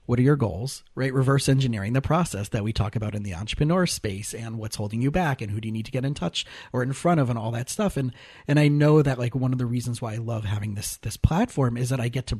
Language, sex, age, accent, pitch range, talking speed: English, male, 30-49, American, 110-140 Hz, 295 wpm